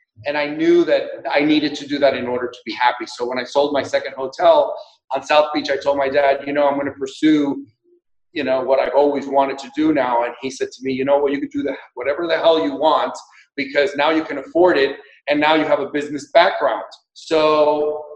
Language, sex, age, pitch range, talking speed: English, male, 30-49, 140-165 Hz, 240 wpm